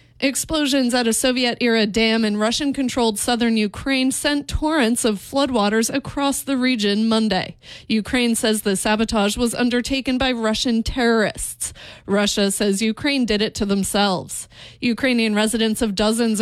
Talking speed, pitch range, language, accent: 135 wpm, 210-255 Hz, English, American